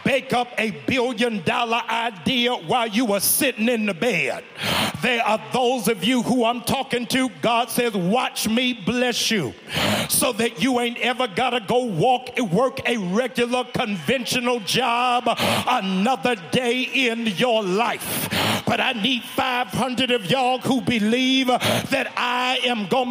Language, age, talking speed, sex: English, 50-69, 155 wpm, male